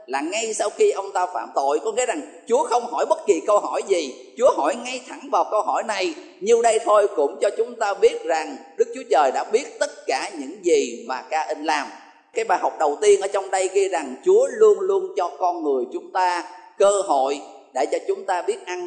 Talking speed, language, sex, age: 240 wpm, Vietnamese, male, 20-39